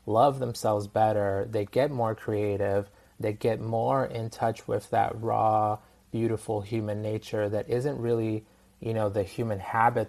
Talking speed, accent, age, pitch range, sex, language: 155 wpm, American, 20-39, 100-115 Hz, male, English